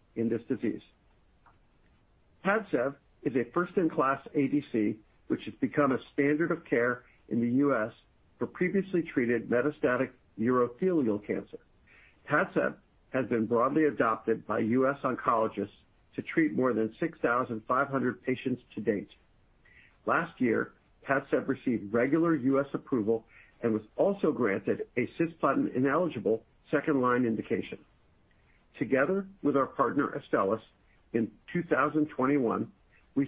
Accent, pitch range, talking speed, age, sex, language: American, 120-160 Hz, 115 wpm, 50-69, male, English